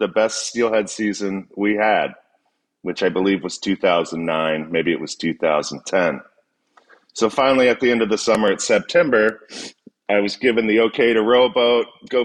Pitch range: 100-120 Hz